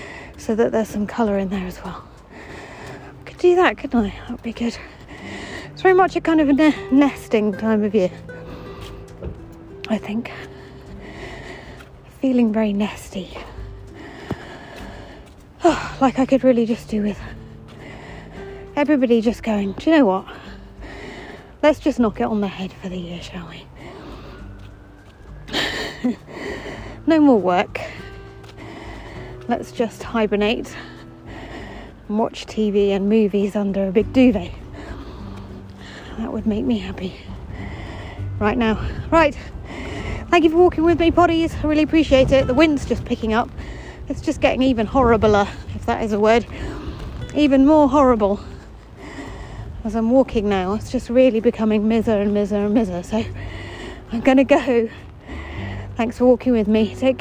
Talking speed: 145 wpm